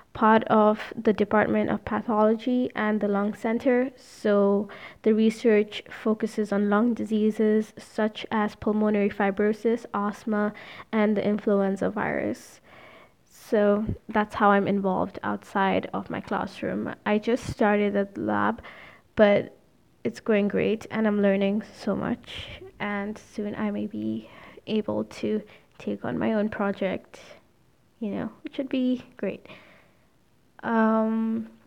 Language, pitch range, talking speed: English, 205-225 Hz, 130 wpm